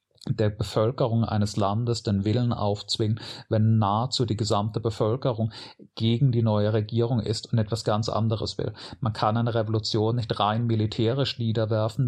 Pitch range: 110-120 Hz